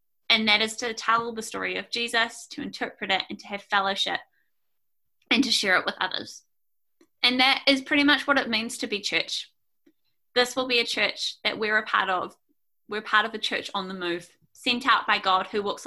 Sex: female